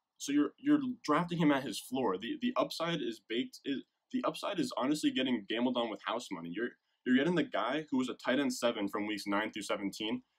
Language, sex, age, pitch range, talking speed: English, male, 20-39, 110-155 Hz, 230 wpm